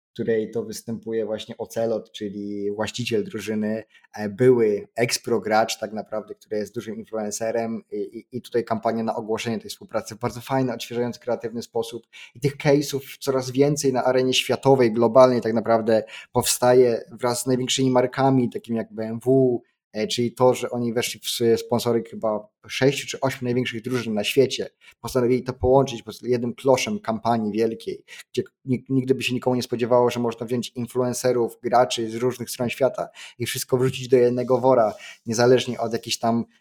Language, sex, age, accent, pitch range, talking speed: Polish, male, 20-39, native, 115-125 Hz, 165 wpm